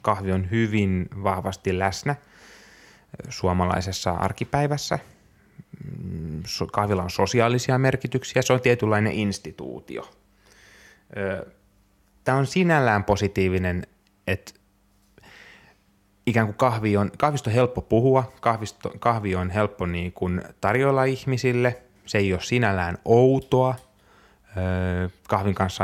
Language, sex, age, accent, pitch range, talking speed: Finnish, male, 20-39, native, 95-120 Hz, 85 wpm